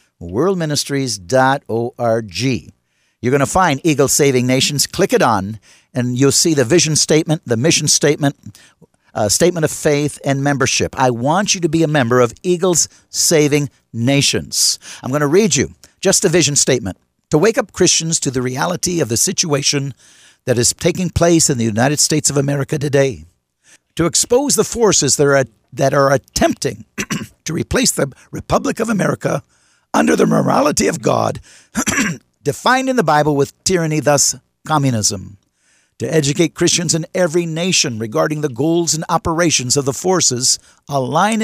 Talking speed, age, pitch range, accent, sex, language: 160 wpm, 60-79, 130-170 Hz, American, male, English